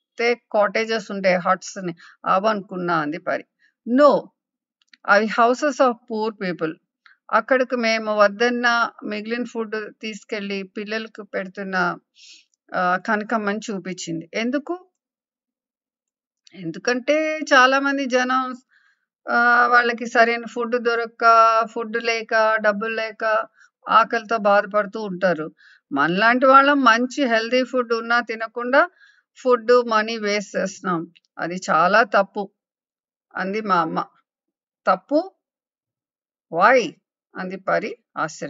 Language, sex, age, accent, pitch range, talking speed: English, female, 50-69, Indian, 195-255 Hz, 65 wpm